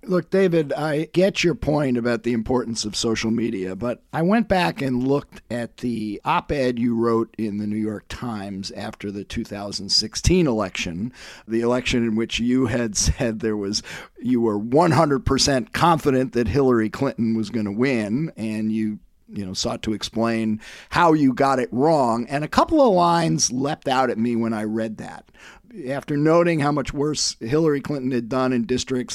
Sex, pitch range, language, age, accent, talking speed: male, 115-165 Hz, English, 50-69, American, 185 wpm